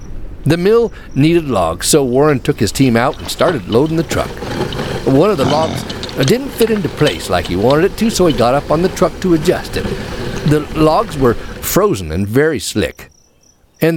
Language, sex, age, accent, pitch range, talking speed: English, male, 50-69, American, 105-150 Hz, 200 wpm